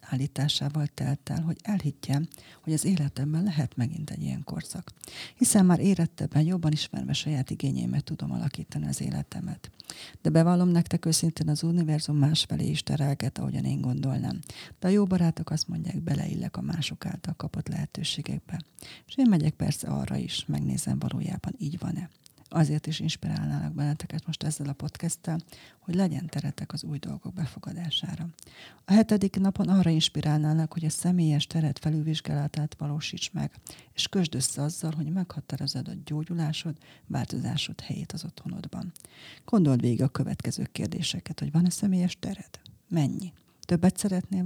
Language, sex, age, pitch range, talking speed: Hungarian, female, 40-59, 150-180 Hz, 150 wpm